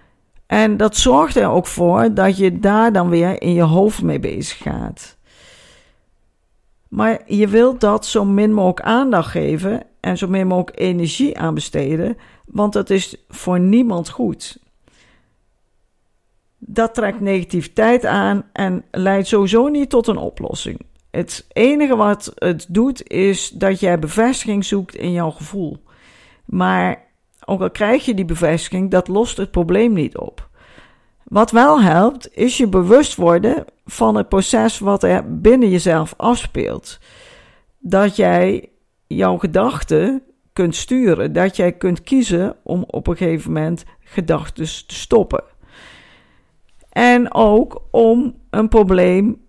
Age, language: 50-69, Dutch